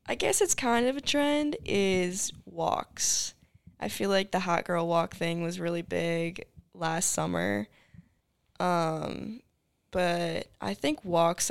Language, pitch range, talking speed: English, 165-185 Hz, 140 wpm